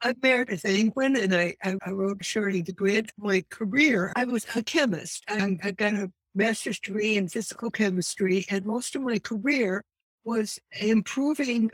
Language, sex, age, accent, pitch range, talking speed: English, female, 60-79, American, 190-220 Hz, 170 wpm